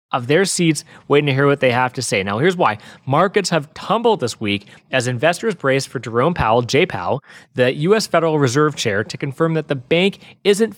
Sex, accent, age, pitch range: male, American, 30-49, 125-165 Hz